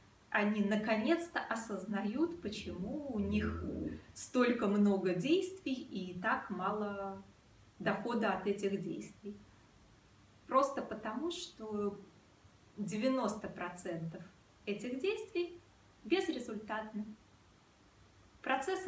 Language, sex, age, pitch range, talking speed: Russian, female, 20-39, 180-255 Hz, 75 wpm